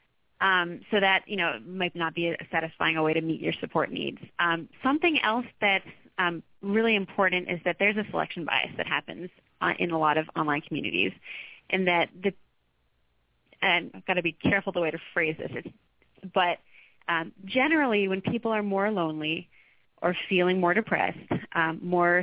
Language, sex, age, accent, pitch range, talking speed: English, female, 20-39, American, 170-205 Hz, 180 wpm